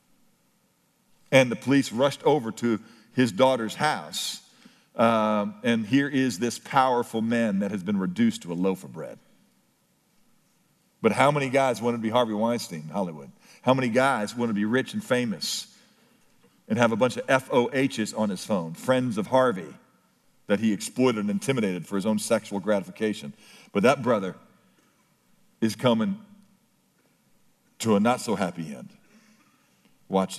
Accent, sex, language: American, male, English